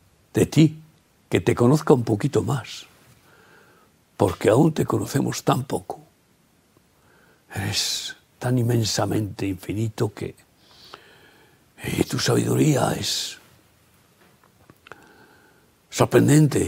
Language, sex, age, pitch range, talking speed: Spanish, male, 60-79, 115-150 Hz, 85 wpm